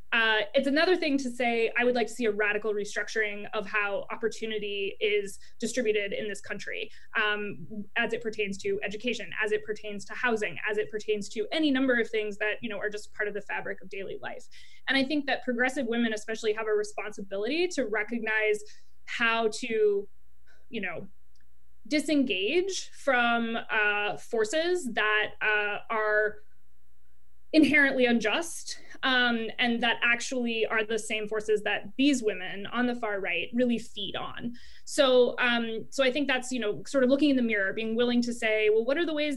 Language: English